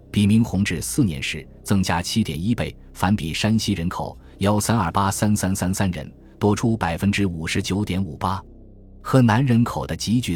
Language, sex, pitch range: Chinese, male, 80-110 Hz